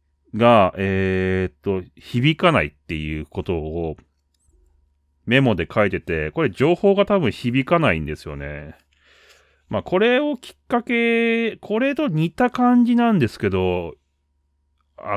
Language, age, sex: Japanese, 30-49, male